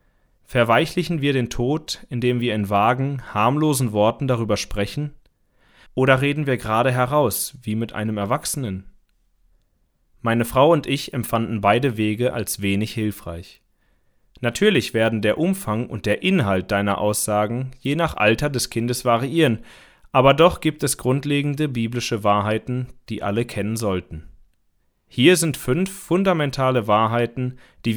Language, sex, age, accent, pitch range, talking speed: German, male, 30-49, German, 105-135 Hz, 135 wpm